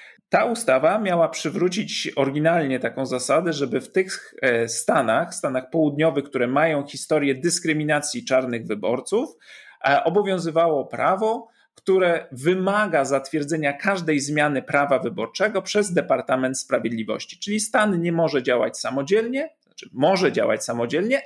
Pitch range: 130-190 Hz